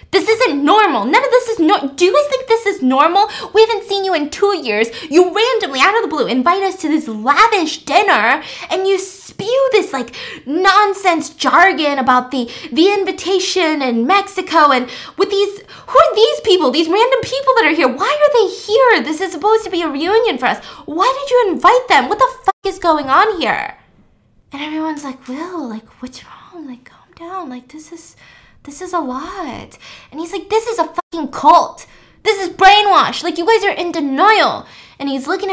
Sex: female